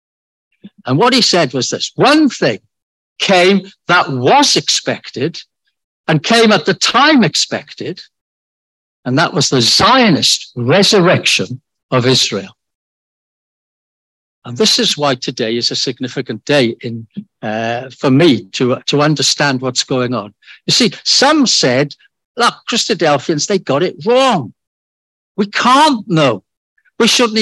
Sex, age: male, 60-79